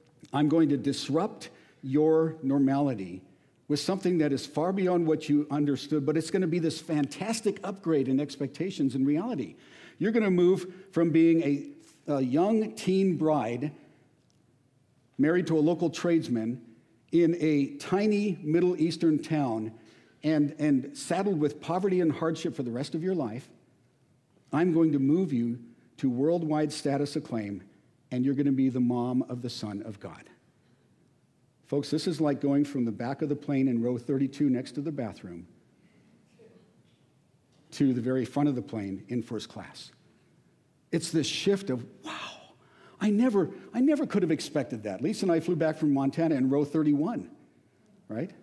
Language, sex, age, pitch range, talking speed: English, male, 50-69, 130-165 Hz, 165 wpm